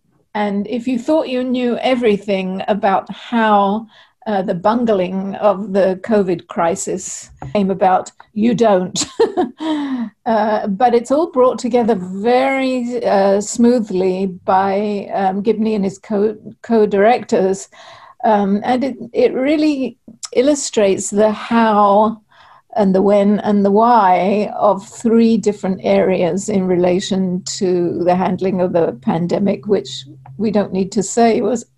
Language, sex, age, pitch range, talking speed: English, female, 50-69, 195-225 Hz, 125 wpm